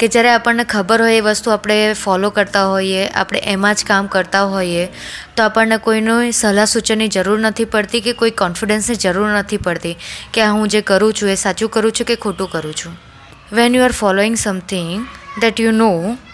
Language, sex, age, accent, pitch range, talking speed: Gujarati, female, 20-39, native, 195-230 Hz, 175 wpm